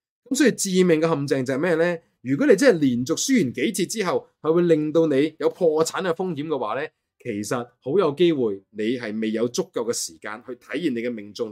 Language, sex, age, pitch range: Chinese, male, 20-39, 110-160 Hz